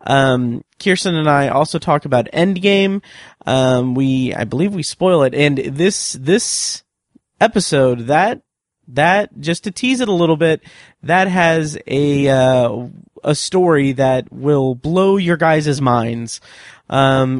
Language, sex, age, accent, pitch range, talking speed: English, male, 30-49, American, 130-165 Hz, 145 wpm